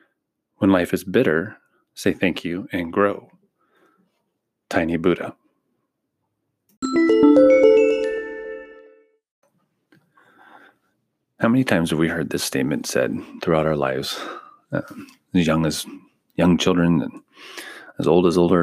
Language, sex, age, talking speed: English, male, 30-49, 110 wpm